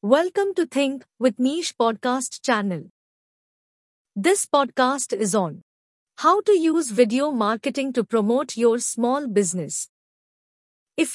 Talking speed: 120 wpm